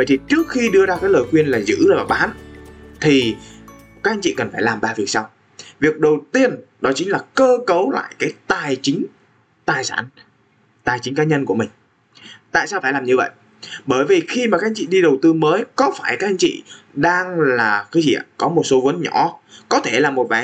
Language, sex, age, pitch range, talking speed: Vietnamese, male, 20-39, 115-180 Hz, 235 wpm